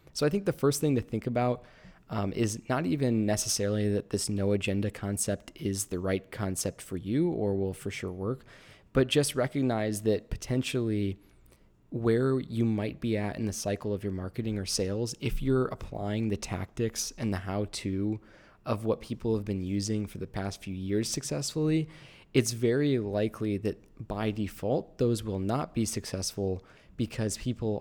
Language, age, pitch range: English, 20-39, 100-120 Hz